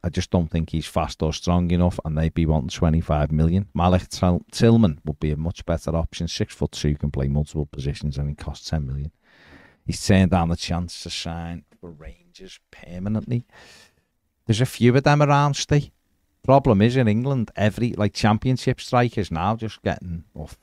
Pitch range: 80-100 Hz